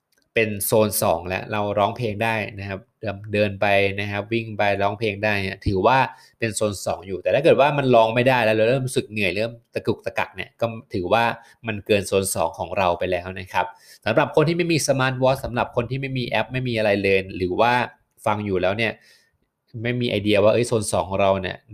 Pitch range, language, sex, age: 100-115 Hz, Thai, male, 20-39